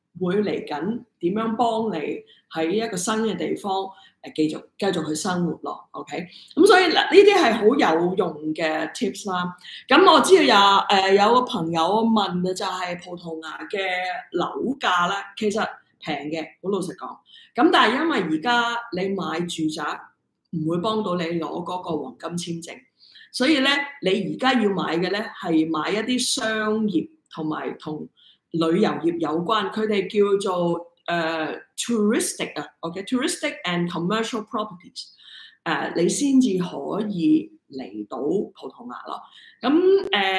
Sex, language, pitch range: female, Chinese, 165-225 Hz